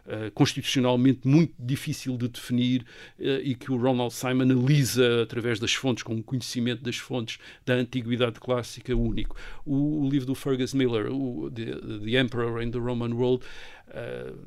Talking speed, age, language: 165 wpm, 50-69, Portuguese